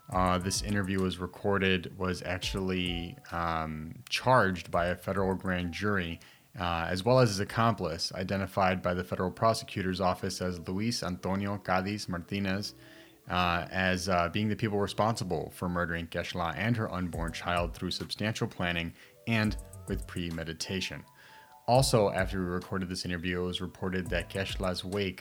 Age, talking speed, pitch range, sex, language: 30-49, 150 wpm, 90-105 Hz, male, English